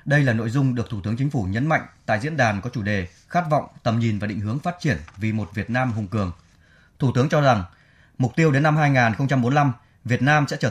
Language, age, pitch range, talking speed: Vietnamese, 20-39, 110-140 Hz, 250 wpm